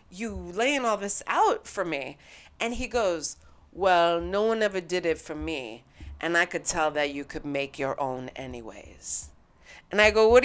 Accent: American